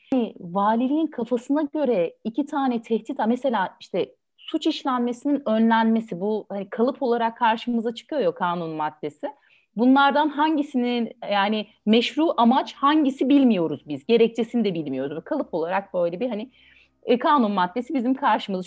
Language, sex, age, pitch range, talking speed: Turkish, female, 30-49, 200-255 Hz, 135 wpm